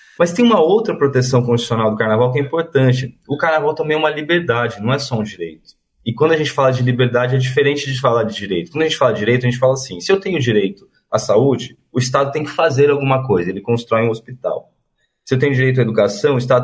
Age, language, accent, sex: 20-39, Portuguese, Brazilian, male